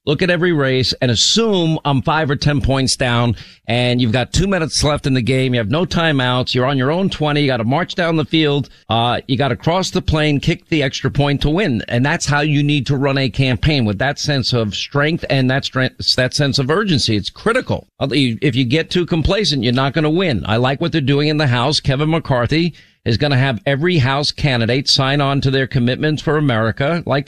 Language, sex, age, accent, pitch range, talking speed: English, male, 50-69, American, 120-150 Hz, 240 wpm